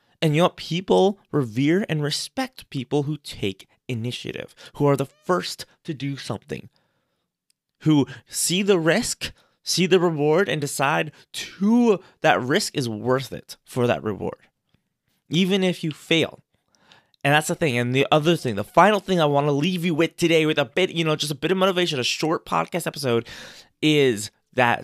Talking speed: 180 wpm